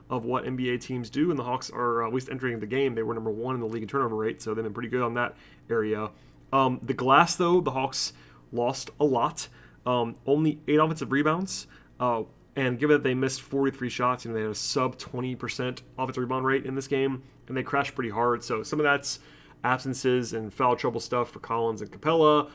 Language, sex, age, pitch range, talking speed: English, male, 30-49, 115-135 Hz, 225 wpm